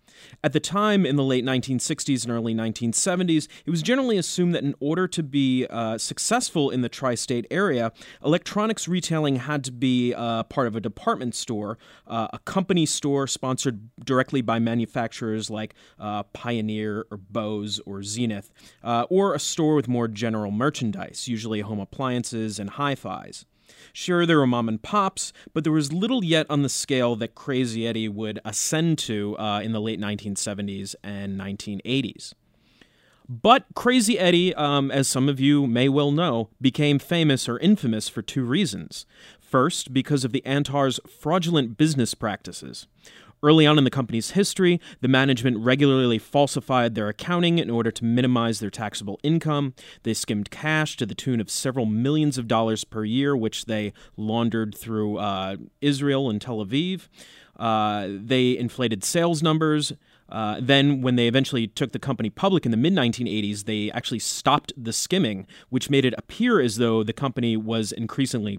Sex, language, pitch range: male, English, 110-150 Hz